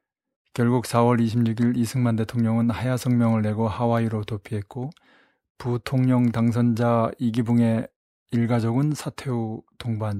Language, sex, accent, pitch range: Korean, male, native, 115-130 Hz